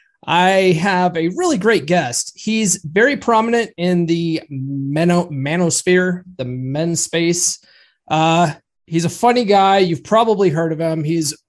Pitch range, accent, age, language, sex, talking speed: 140-185 Hz, American, 20-39, English, male, 135 wpm